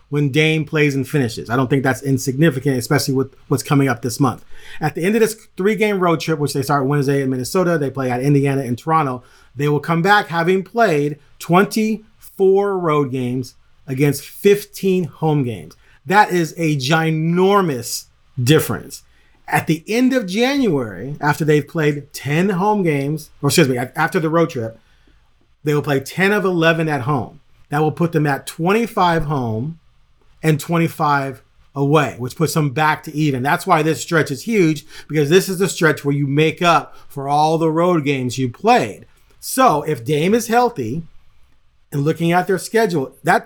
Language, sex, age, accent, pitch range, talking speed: English, male, 40-59, American, 140-185 Hz, 180 wpm